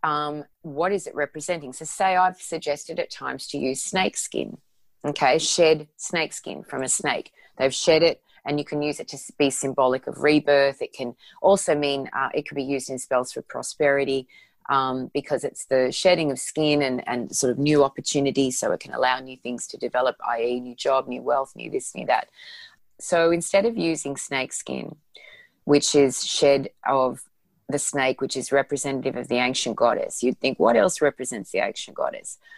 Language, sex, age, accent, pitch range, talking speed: English, female, 30-49, Australian, 135-165 Hz, 195 wpm